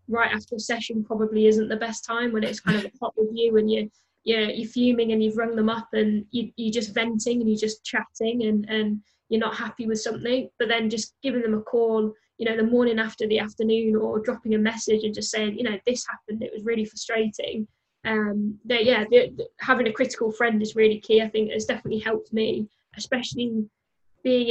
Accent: British